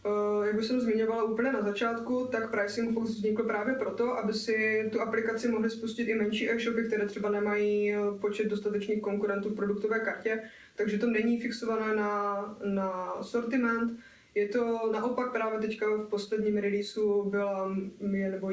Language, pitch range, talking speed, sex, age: Czech, 205-220 Hz, 150 wpm, female, 20-39